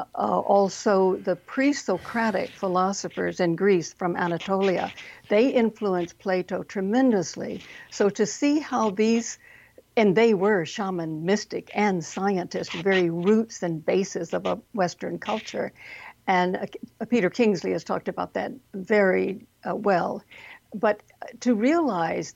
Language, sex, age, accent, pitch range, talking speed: English, female, 60-79, American, 185-235 Hz, 130 wpm